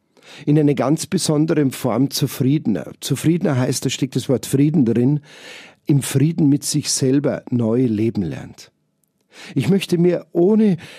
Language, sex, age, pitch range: German, male, 50-69, 120-160 Hz